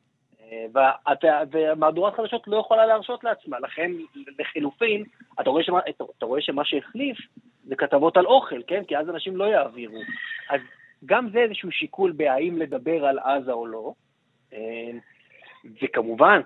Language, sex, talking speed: Hebrew, male, 130 wpm